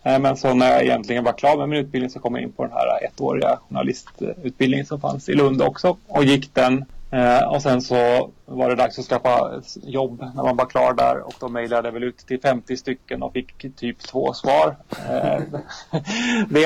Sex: male